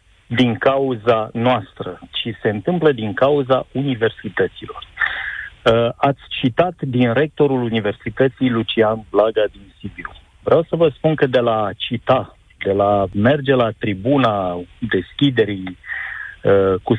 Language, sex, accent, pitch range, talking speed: Romanian, male, native, 115-145 Hz, 115 wpm